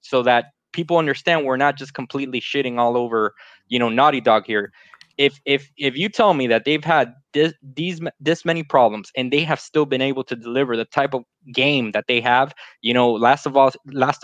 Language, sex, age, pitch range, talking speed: English, male, 20-39, 125-150 Hz, 215 wpm